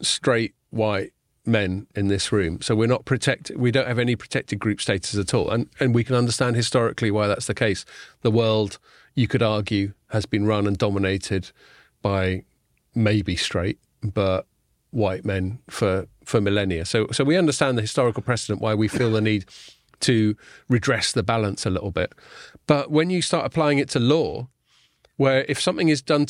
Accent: British